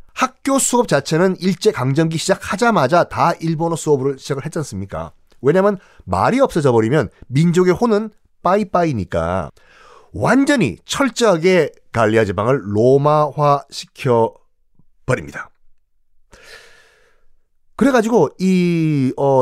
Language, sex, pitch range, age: Korean, male, 135-205 Hz, 40-59